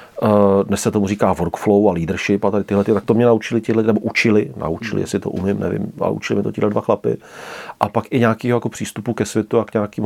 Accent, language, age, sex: native, Czech, 40-59, male